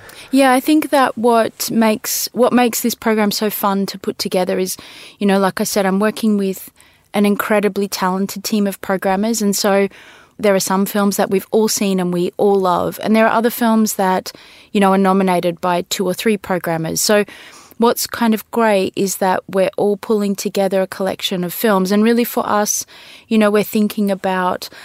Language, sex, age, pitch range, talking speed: English, female, 20-39, 185-215 Hz, 200 wpm